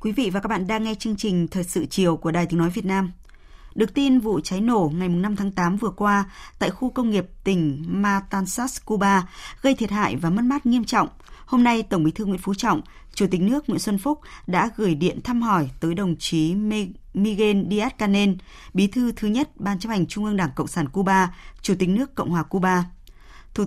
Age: 20-39